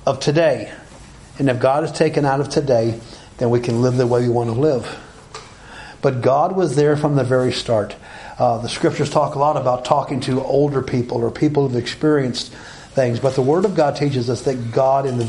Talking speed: 220 wpm